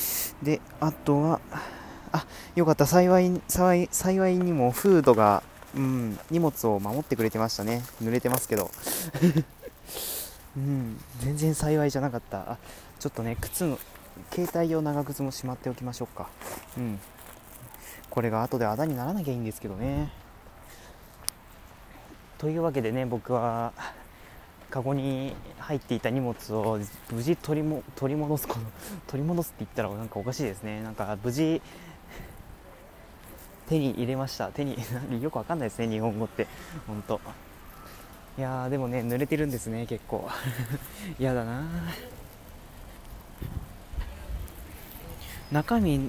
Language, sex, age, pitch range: Japanese, male, 20-39, 110-145 Hz